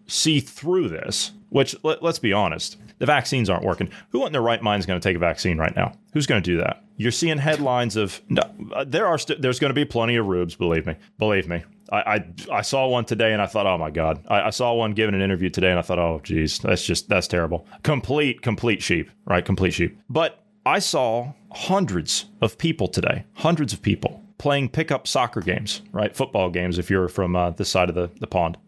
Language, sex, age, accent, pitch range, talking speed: English, male, 30-49, American, 100-155 Hz, 230 wpm